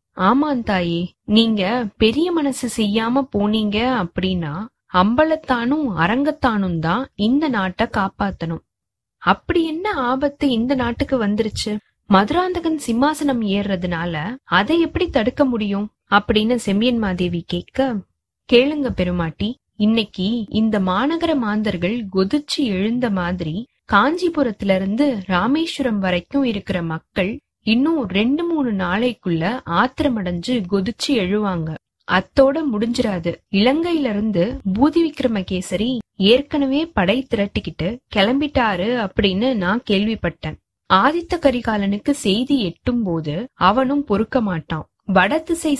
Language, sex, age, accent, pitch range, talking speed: Tamil, female, 20-39, native, 190-270 Hz, 90 wpm